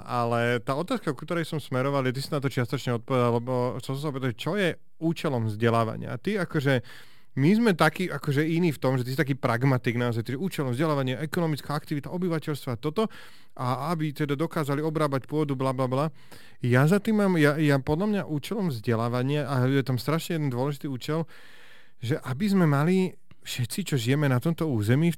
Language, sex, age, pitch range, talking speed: Slovak, male, 30-49, 125-150 Hz, 200 wpm